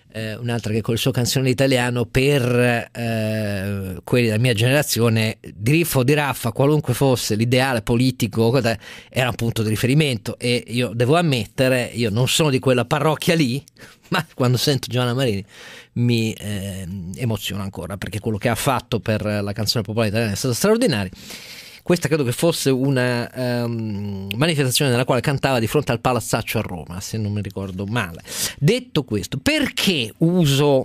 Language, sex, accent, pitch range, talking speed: Italian, male, native, 110-140 Hz, 165 wpm